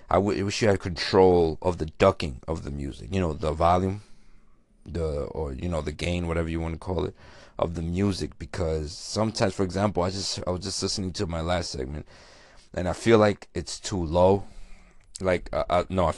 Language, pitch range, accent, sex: English, 80-95 Hz, American, male